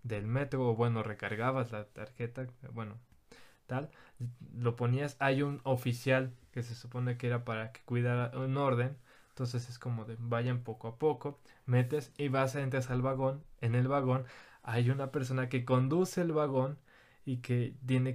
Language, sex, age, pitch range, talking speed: Spanish, male, 20-39, 115-130 Hz, 165 wpm